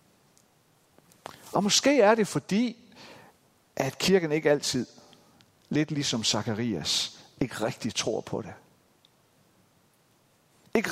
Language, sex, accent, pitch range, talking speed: Danish, male, native, 125-190 Hz, 100 wpm